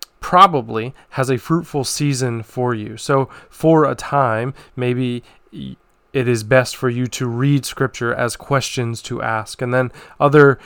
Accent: American